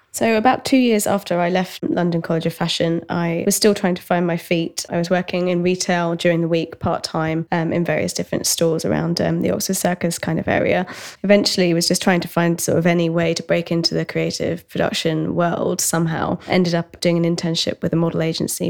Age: 20-39